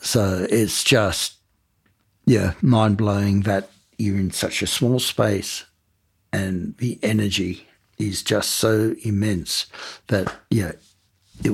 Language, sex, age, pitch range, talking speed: English, male, 60-79, 95-110 Hz, 115 wpm